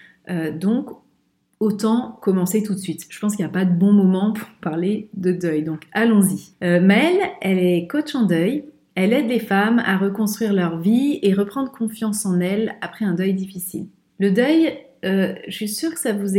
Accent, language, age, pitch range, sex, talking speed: French, French, 30-49, 180-215 Hz, female, 200 wpm